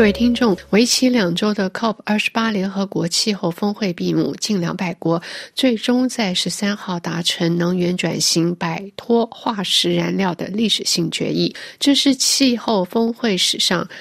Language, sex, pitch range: Chinese, female, 175-225 Hz